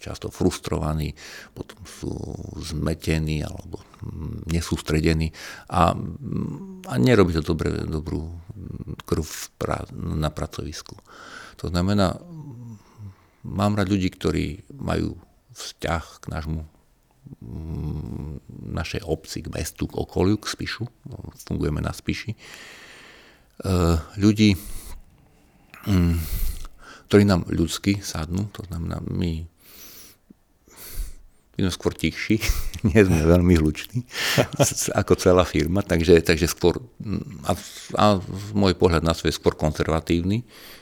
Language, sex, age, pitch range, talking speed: Slovak, male, 50-69, 80-100 Hz, 100 wpm